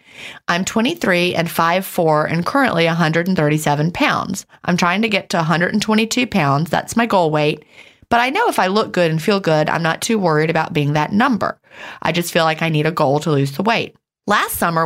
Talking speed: 205 wpm